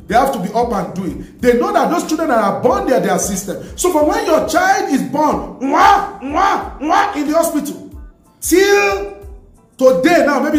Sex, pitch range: male, 240-330 Hz